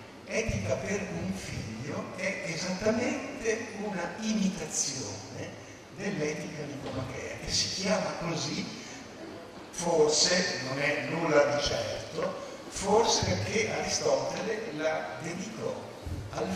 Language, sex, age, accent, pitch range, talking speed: Italian, male, 60-79, native, 125-165 Hz, 95 wpm